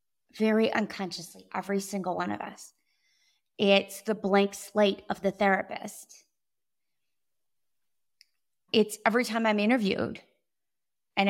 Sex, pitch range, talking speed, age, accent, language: female, 175-215 Hz, 105 wpm, 30-49, American, English